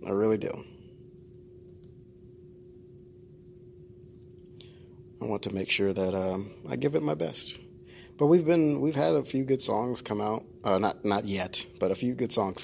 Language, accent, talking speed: English, American, 165 wpm